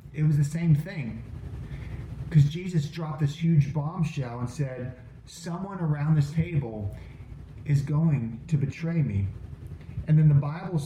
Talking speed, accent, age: 145 wpm, American, 30-49